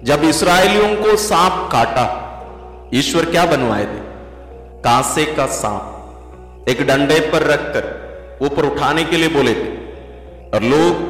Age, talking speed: 50-69, 130 wpm